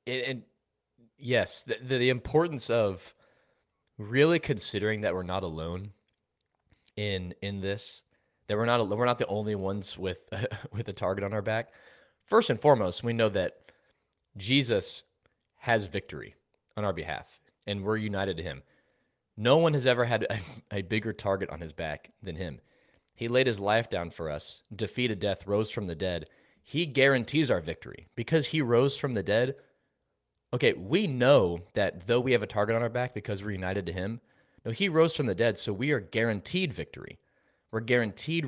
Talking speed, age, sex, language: 180 wpm, 20-39, male, English